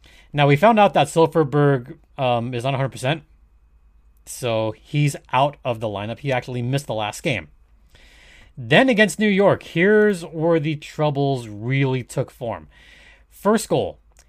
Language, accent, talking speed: English, American, 145 wpm